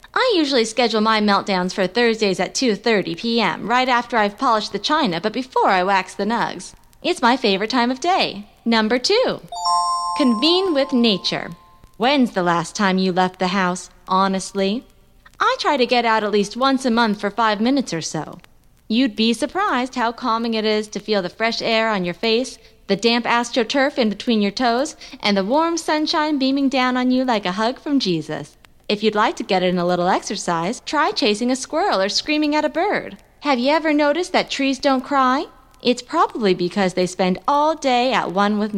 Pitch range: 195-265 Hz